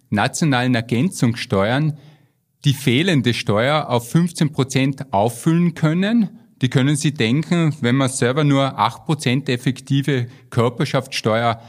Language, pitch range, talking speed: German, 120-150 Hz, 115 wpm